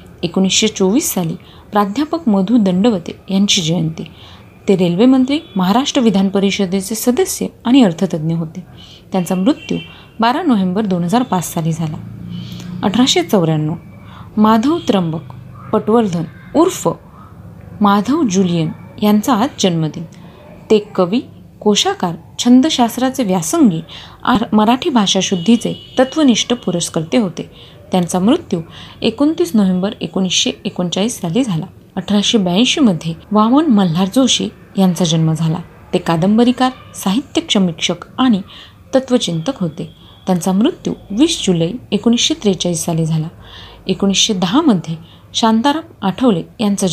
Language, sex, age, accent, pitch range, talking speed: Marathi, female, 30-49, native, 175-245 Hz, 100 wpm